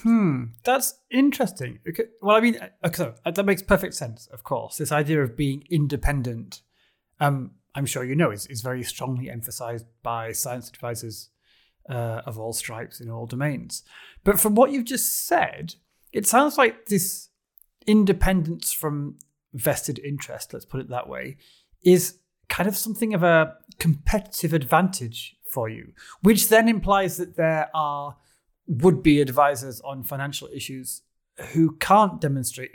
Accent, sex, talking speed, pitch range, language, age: British, male, 150 wpm, 125-190 Hz, English, 30-49